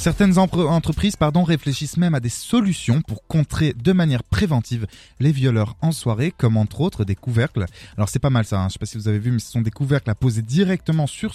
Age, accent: 20-39, French